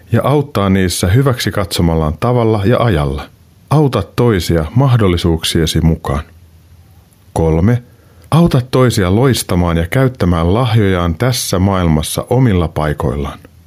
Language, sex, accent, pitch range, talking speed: Finnish, male, native, 85-120 Hz, 100 wpm